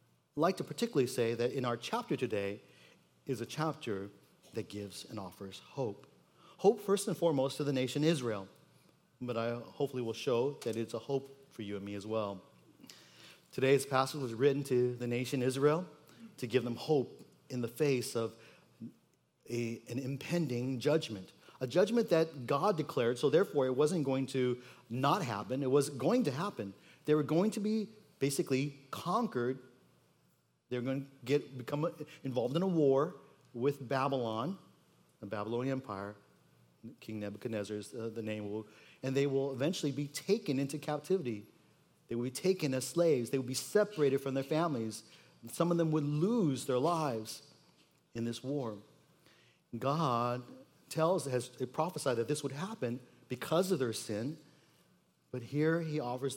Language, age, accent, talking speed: English, 40-59, American, 160 wpm